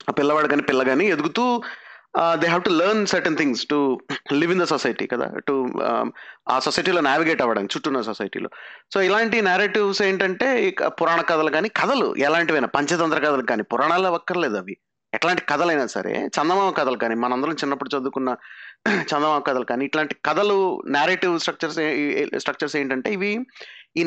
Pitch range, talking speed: 150-205 Hz, 150 wpm